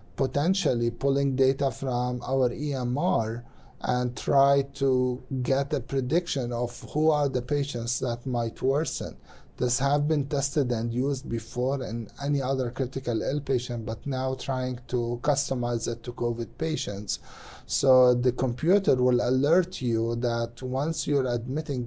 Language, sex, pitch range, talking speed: English, male, 120-135 Hz, 145 wpm